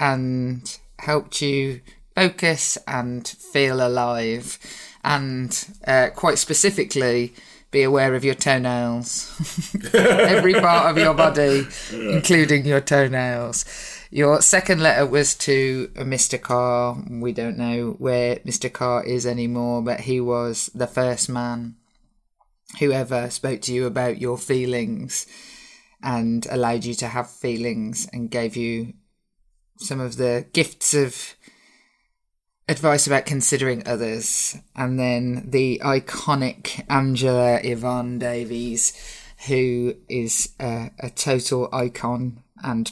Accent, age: British, 20-39